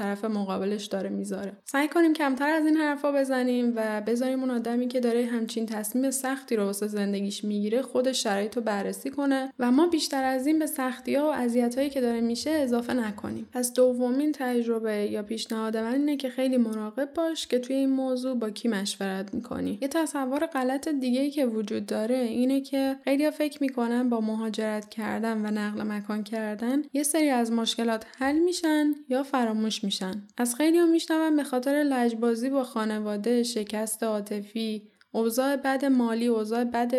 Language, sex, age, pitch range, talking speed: Persian, female, 10-29, 210-265 Hz, 175 wpm